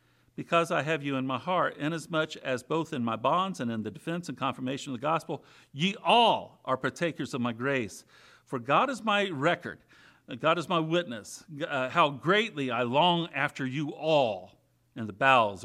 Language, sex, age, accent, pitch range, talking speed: English, male, 50-69, American, 125-165 Hz, 190 wpm